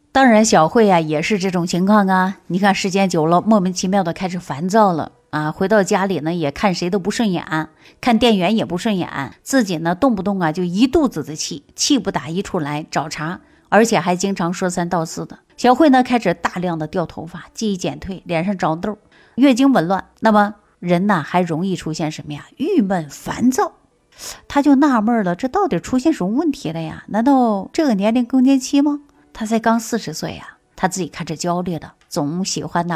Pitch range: 170-220 Hz